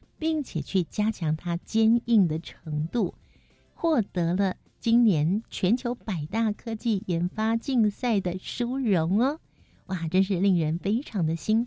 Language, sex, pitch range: Chinese, female, 170-230 Hz